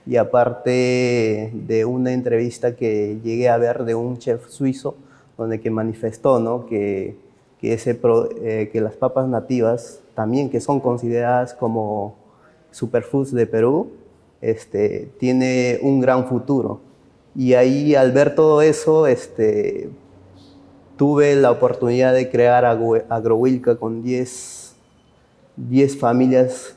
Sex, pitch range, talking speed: male, 115-130 Hz, 130 wpm